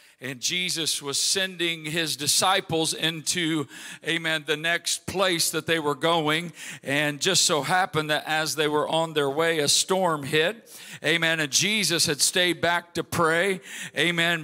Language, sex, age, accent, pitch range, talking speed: English, male, 50-69, American, 155-185 Hz, 160 wpm